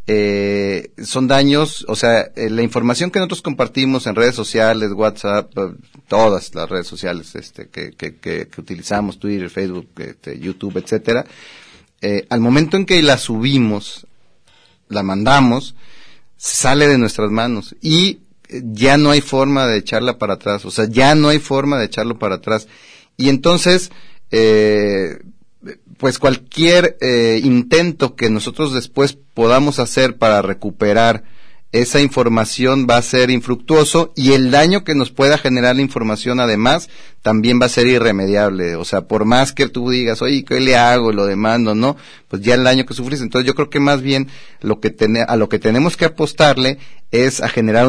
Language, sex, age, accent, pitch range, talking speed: Spanish, male, 40-59, Mexican, 110-135 Hz, 170 wpm